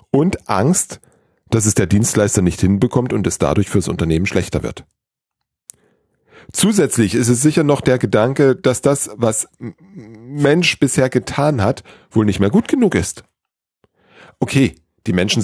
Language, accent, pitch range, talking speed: German, German, 100-135 Hz, 150 wpm